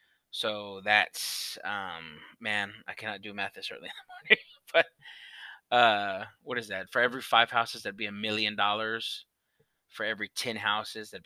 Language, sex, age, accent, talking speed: English, male, 30-49, American, 170 wpm